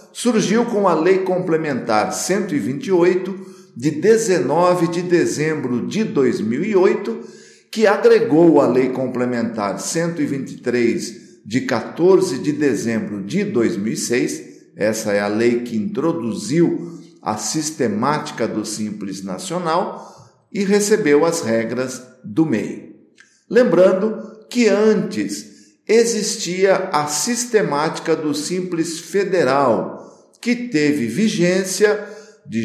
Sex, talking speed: male, 100 wpm